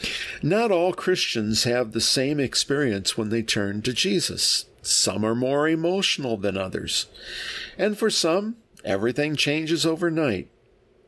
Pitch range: 110-155 Hz